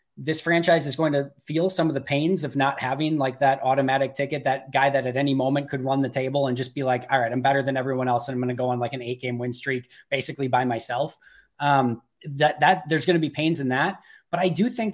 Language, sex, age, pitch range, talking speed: English, male, 20-39, 130-165 Hz, 270 wpm